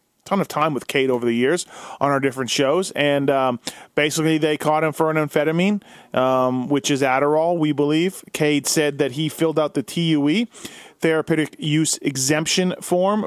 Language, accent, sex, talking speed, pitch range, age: English, American, male, 175 wpm, 140-175 Hz, 30-49